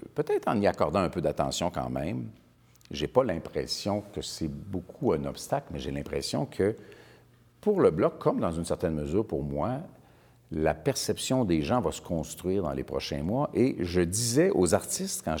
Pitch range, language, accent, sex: 80-110 Hz, French, Canadian, male